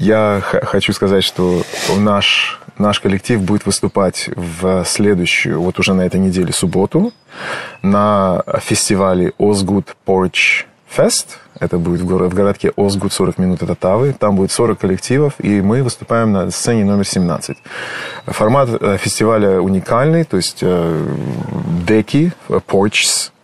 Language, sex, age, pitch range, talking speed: Russian, male, 20-39, 90-110 Hz, 135 wpm